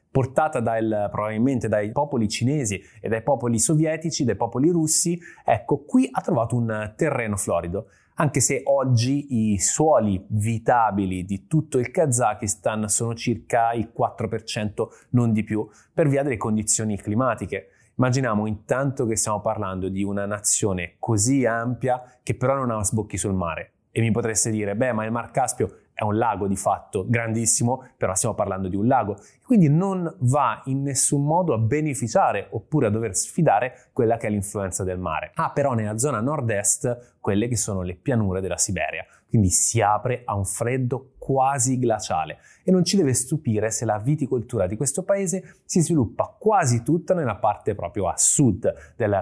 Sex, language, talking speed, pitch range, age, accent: male, Italian, 170 wpm, 105-135 Hz, 20-39, native